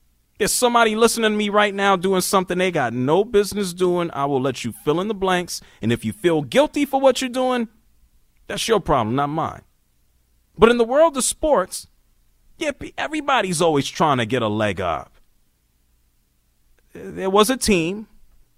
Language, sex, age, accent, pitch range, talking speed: English, male, 30-49, American, 135-225 Hz, 175 wpm